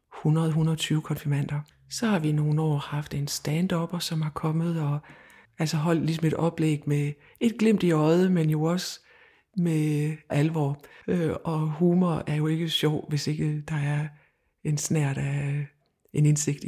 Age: 60-79